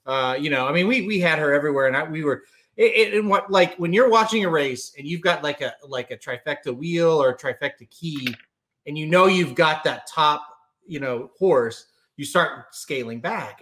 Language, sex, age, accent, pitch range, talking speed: English, male, 30-49, American, 130-165 Hz, 220 wpm